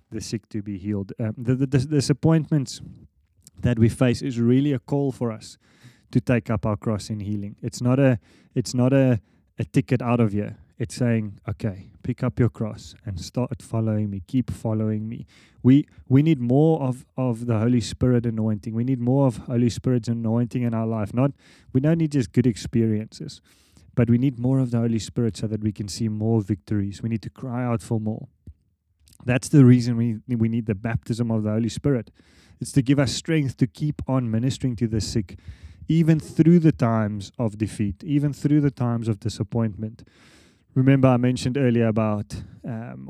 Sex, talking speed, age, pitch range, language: male, 200 wpm, 20-39, 110-130 Hz, English